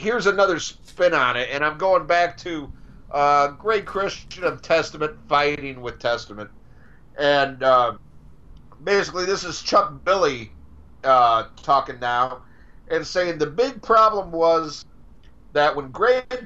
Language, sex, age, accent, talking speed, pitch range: English, male, 50-69, American, 135 wpm, 135-185 Hz